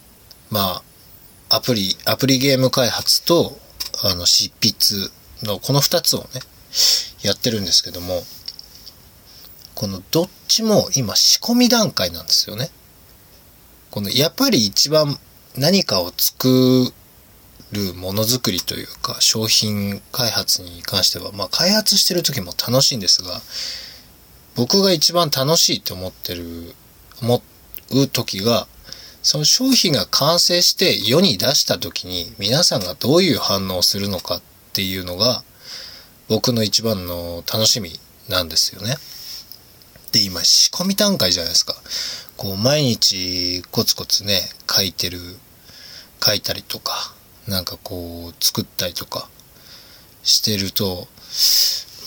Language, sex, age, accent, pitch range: Japanese, male, 20-39, native, 90-130 Hz